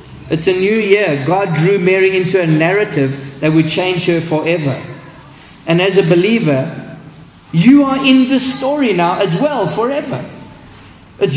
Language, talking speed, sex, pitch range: English, 155 wpm, male, 145-185 Hz